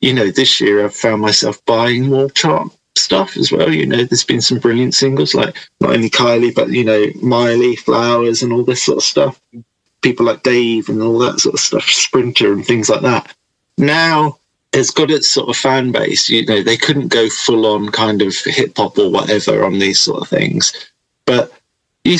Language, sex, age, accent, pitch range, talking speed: English, male, 30-49, British, 110-145 Hz, 210 wpm